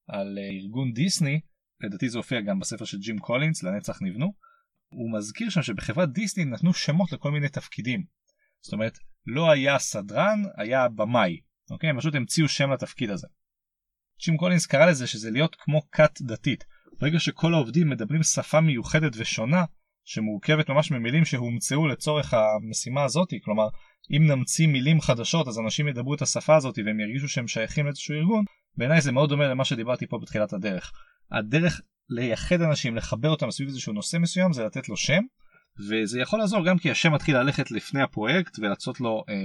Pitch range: 120-175 Hz